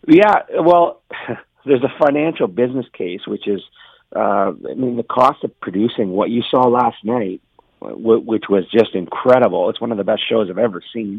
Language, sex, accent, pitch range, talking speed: English, male, American, 95-115 Hz, 180 wpm